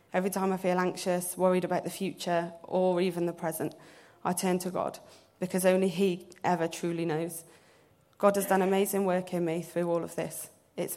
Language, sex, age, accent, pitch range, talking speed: English, female, 20-39, British, 170-185 Hz, 190 wpm